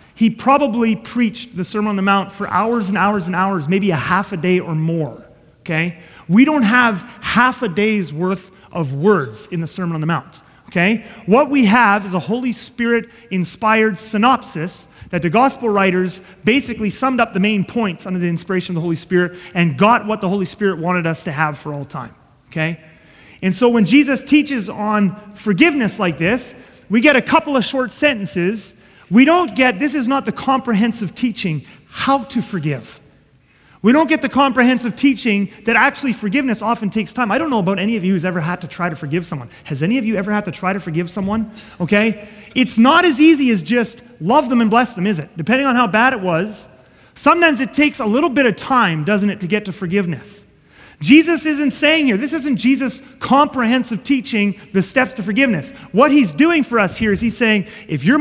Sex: male